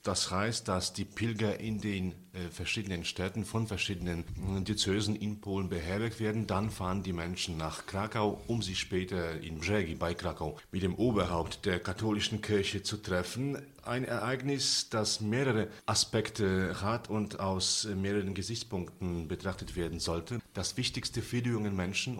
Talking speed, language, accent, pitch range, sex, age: 150 wpm, English, German, 90-110 Hz, male, 40-59